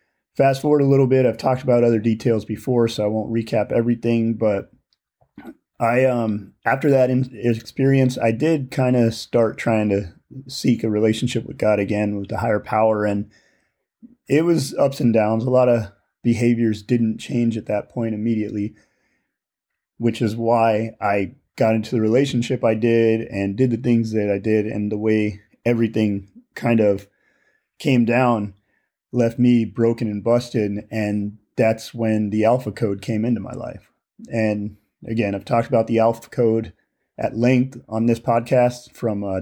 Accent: American